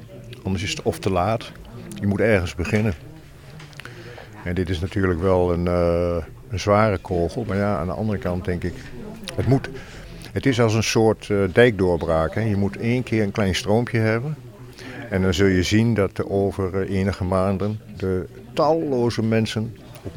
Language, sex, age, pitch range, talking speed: Dutch, male, 50-69, 95-110 Hz, 175 wpm